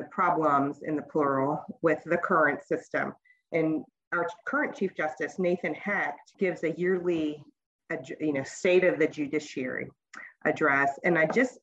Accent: American